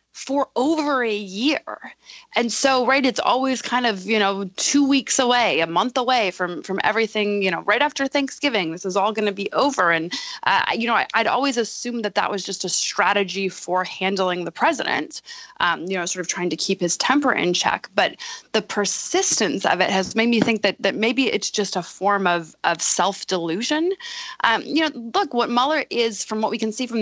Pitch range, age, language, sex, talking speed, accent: 190-260 Hz, 20-39, English, female, 210 wpm, American